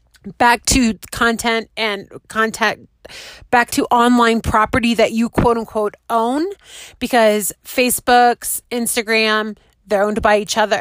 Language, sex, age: English, female, 30-49